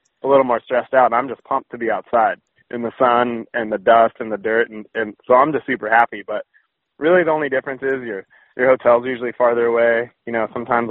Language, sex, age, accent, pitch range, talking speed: English, male, 20-39, American, 110-125 Hz, 230 wpm